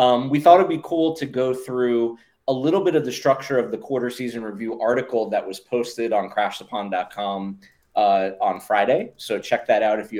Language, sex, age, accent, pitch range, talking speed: English, male, 30-49, American, 110-130 Hz, 205 wpm